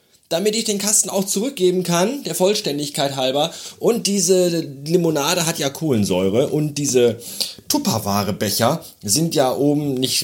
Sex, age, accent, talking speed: male, 30-49, German, 135 wpm